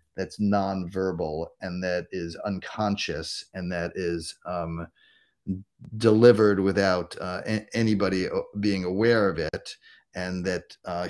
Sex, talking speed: male, 120 wpm